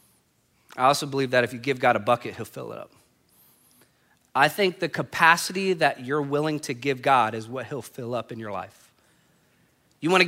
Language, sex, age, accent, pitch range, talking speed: English, male, 30-49, American, 145-195 Hz, 200 wpm